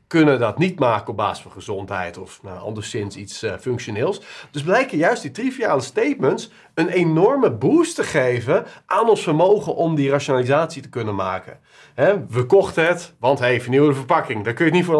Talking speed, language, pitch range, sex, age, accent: 195 wpm, Dutch, 130-180 Hz, male, 40-59, Dutch